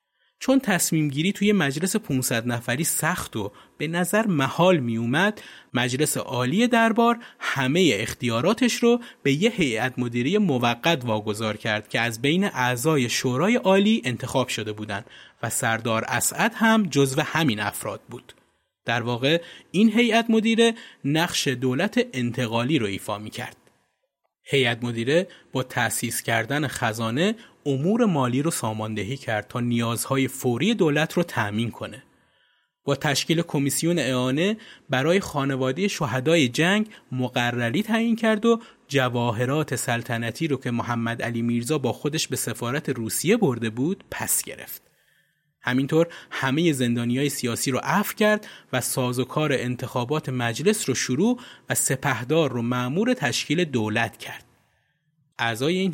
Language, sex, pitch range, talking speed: Persian, male, 120-170 Hz, 135 wpm